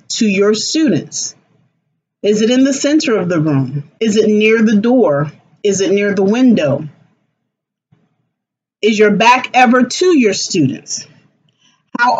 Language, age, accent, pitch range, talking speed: English, 40-59, American, 195-260 Hz, 145 wpm